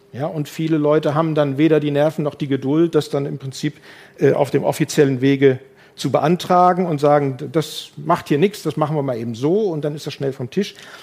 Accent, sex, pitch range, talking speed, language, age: German, male, 135-170 Hz, 230 wpm, German, 50-69